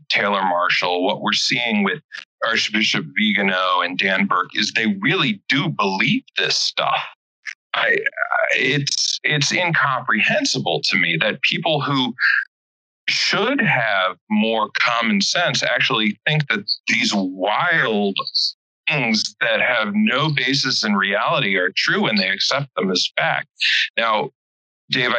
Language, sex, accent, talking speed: English, male, American, 125 wpm